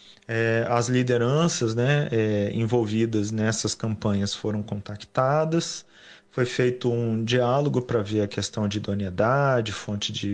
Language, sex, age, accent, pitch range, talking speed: Portuguese, male, 40-59, Brazilian, 105-125 Hz, 115 wpm